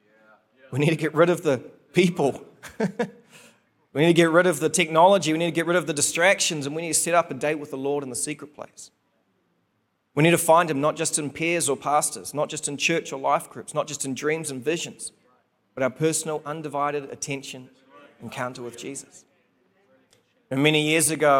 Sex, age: male, 30-49